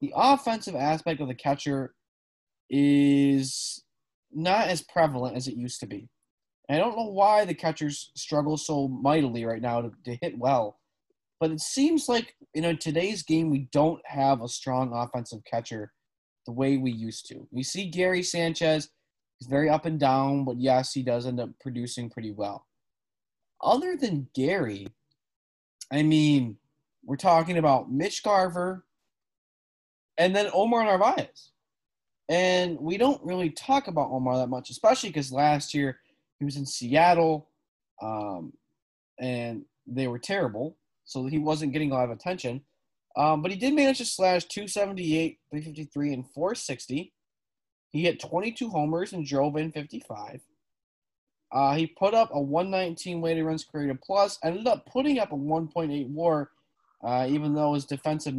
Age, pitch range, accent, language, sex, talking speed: 20-39, 130-175 Hz, American, English, male, 155 wpm